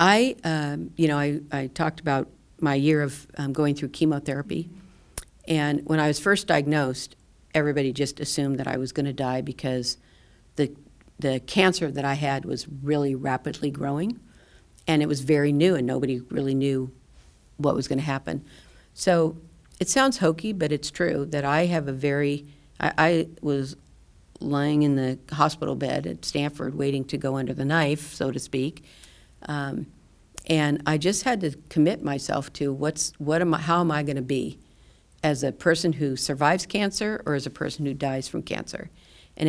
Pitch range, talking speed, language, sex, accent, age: 140-160 Hz, 180 wpm, English, female, American, 50-69